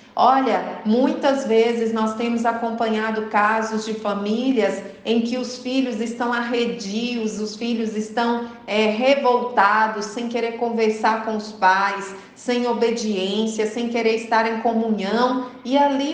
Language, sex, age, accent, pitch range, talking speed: Portuguese, female, 40-59, Brazilian, 215-245 Hz, 125 wpm